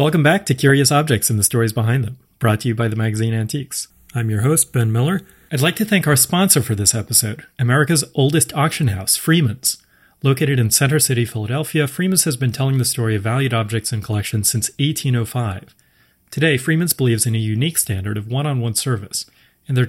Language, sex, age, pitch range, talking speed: English, male, 30-49, 110-140 Hz, 205 wpm